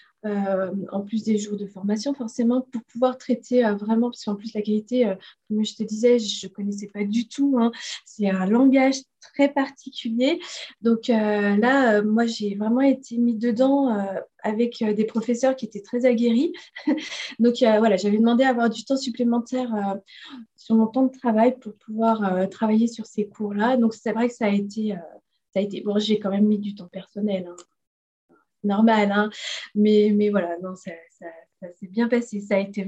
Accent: French